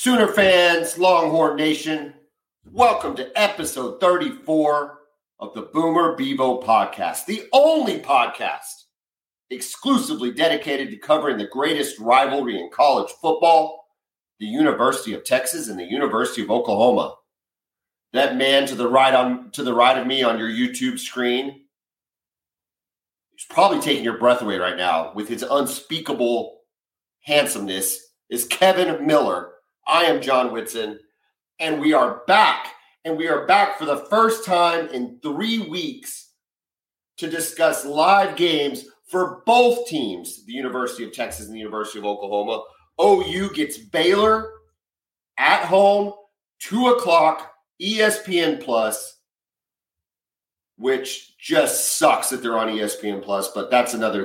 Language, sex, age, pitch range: English, male, 40-59, 125-200 Hz